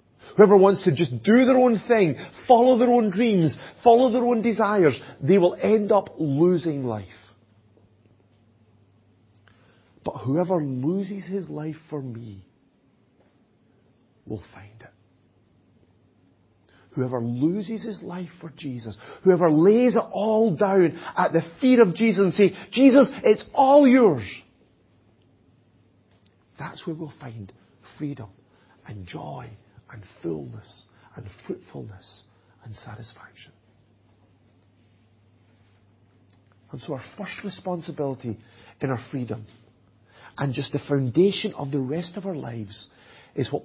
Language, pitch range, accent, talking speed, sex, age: English, 105-175 Hz, British, 120 wpm, male, 40-59